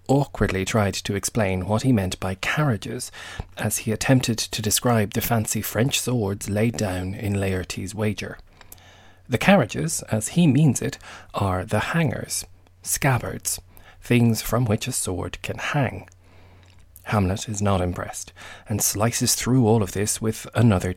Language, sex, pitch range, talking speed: English, male, 90-120 Hz, 150 wpm